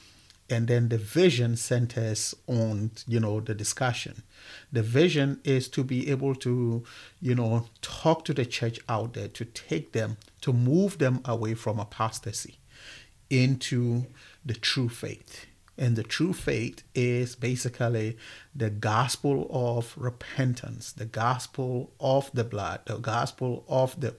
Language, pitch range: English, 110-130 Hz